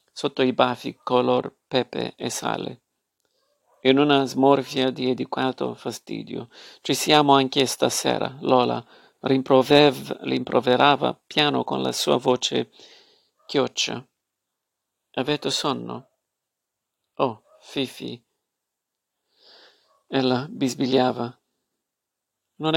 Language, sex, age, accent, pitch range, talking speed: Italian, male, 50-69, native, 130-140 Hz, 85 wpm